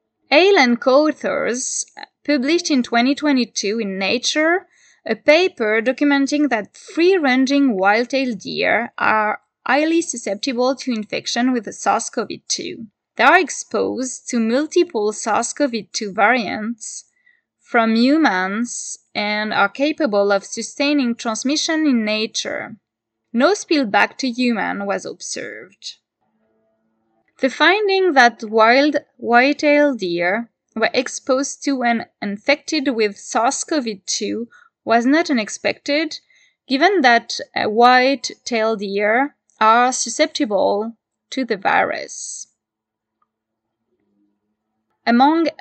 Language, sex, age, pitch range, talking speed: English, female, 20-39, 215-280 Hz, 95 wpm